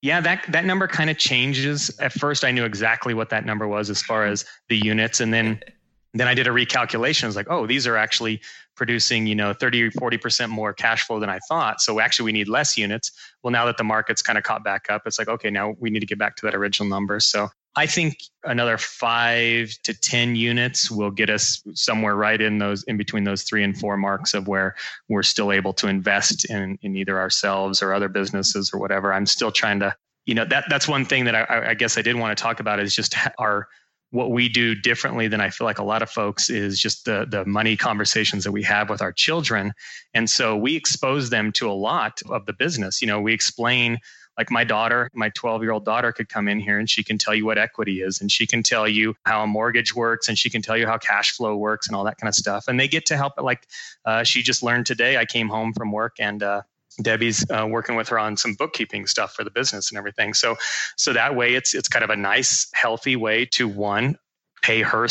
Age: 20-39